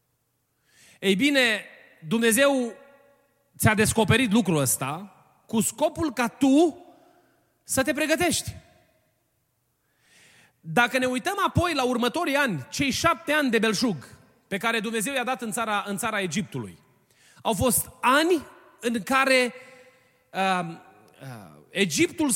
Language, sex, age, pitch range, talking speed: Romanian, male, 30-49, 170-255 Hz, 110 wpm